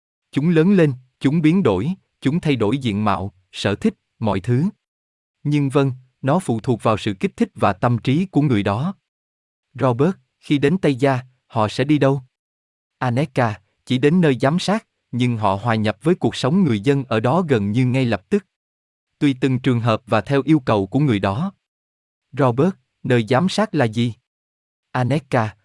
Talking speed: 185 wpm